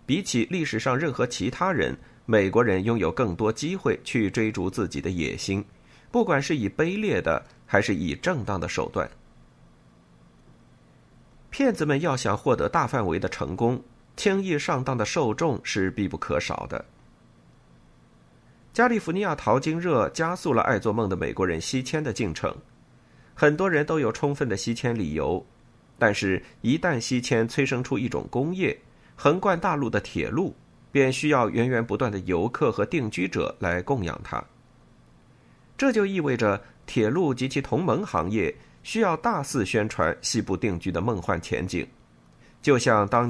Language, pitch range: Chinese, 95-150 Hz